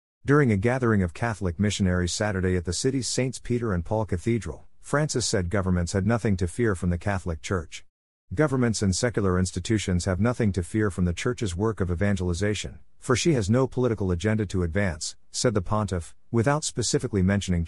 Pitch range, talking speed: 90-115 Hz, 185 wpm